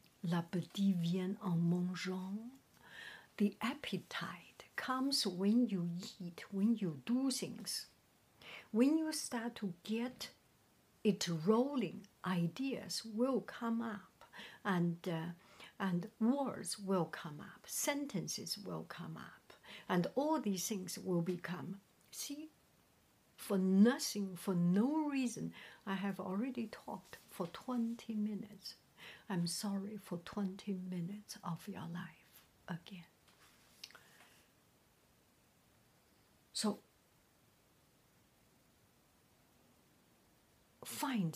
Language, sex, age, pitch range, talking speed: English, female, 60-79, 180-230 Hz, 95 wpm